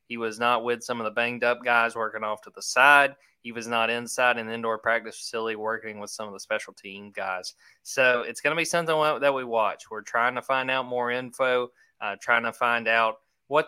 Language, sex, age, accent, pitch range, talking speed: English, male, 20-39, American, 110-125 Hz, 230 wpm